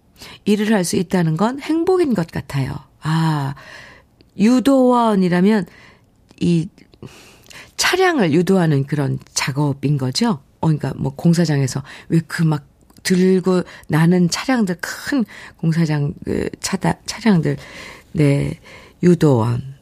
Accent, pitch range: native, 145-185 Hz